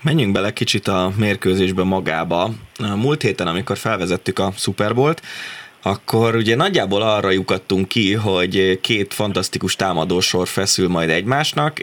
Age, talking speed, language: 20-39, 125 wpm, Hungarian